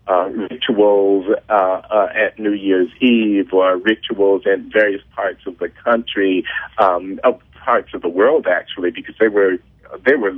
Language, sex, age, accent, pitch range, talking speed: English, male, 50-69, American, 105-130 Hz, 160 wpm